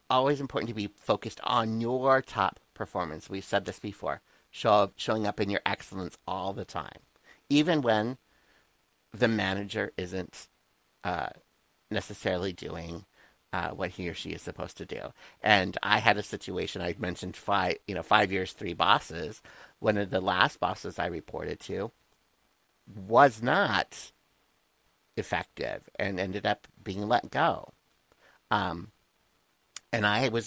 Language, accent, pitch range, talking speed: English, American, 95-115 Hz, 150 wpm